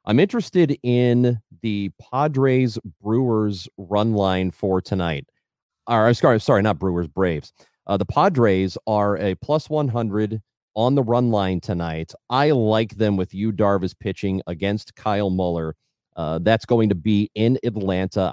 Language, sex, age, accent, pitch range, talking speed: English, male, 30-49, American, 95-125 Hz, 155 wpm